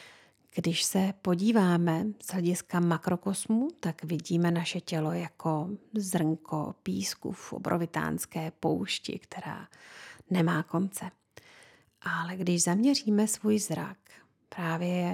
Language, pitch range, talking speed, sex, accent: Czech, 175-215 Hz, 100 wpm, female, native